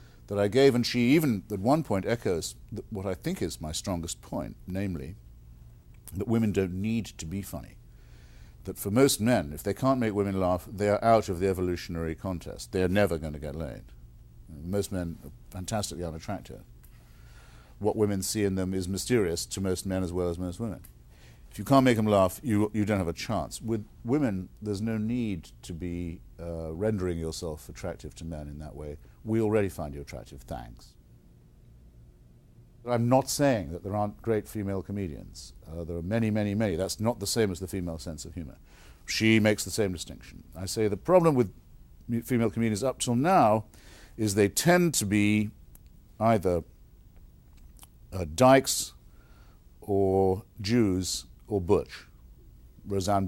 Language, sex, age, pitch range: English, male, 50-69, 80-110 Hz